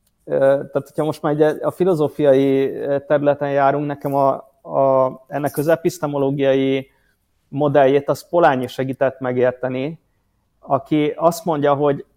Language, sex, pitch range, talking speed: Hungarian, male, 130-155 Hz, 115 wpm